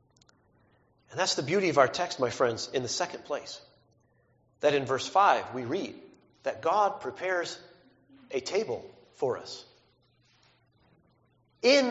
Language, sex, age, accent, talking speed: English, male, 40-59, American, 130 wpm